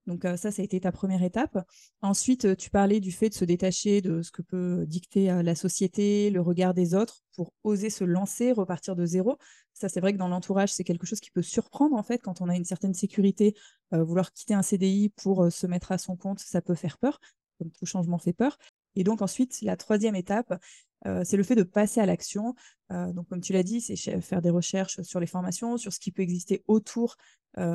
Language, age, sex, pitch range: French, 20-39, female, 180-210 Hz